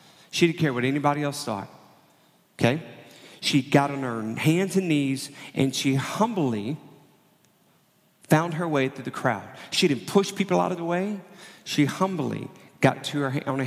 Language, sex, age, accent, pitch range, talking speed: English, male, 40-59, American, 125-160 Hz, 170 wpm